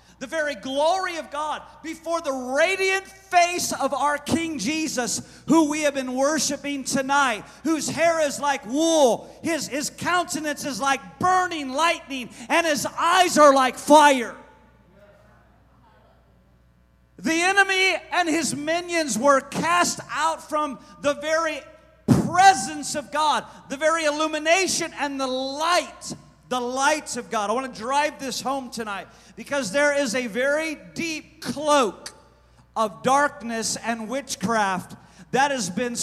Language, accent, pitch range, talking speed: English, American, 230-305 Hz, 135 wpm